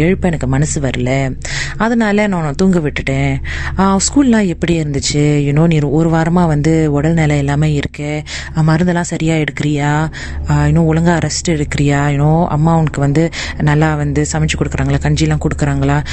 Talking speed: 125 wpm